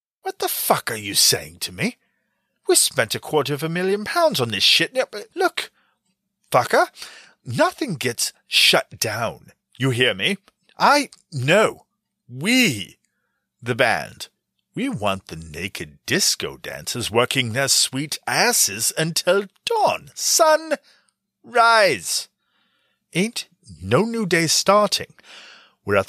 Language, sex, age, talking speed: English, male, 30-49, 120 wpm